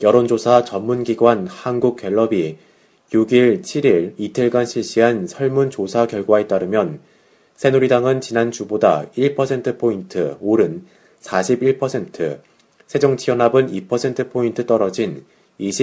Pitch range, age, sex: 110-130 Hz, 30-49, male